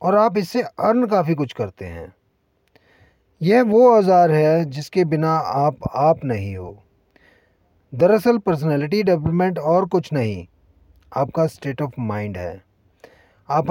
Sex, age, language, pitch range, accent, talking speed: male, 40-59, Hindi, 110-175 Hz, native, 130 wpm